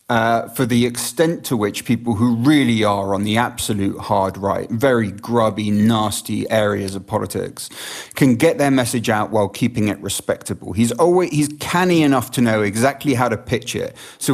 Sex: male